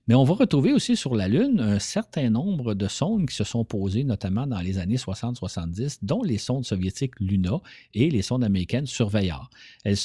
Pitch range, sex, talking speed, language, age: 100-140 Hz, male, 195 wpm, French, 50-69